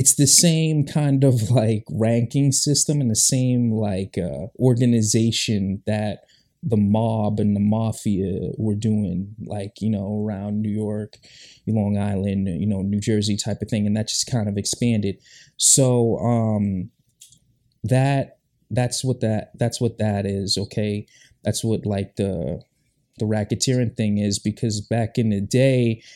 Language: English